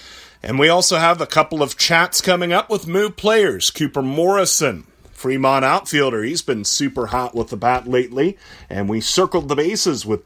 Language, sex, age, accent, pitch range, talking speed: English, male, 30-49, American, 120-155 Hz, 180 wpm